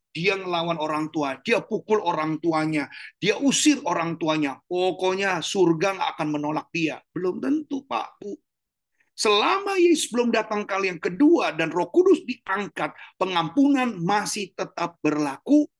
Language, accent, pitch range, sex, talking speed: Indonesian, native, 135-205 Hz, male, 140 wpm